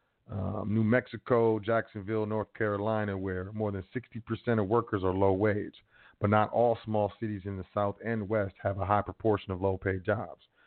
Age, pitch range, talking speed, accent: 40-59, 100-115 Hz, 185 wpm, American